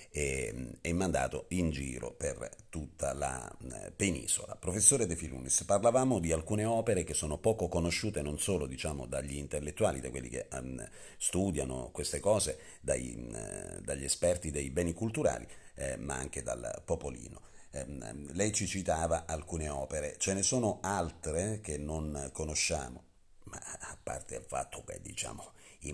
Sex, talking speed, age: male, 140 wpm, 50-69